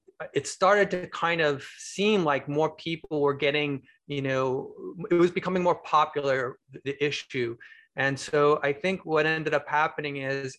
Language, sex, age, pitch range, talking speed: English, male, 30-49, 140-170 Hz, 165 wpm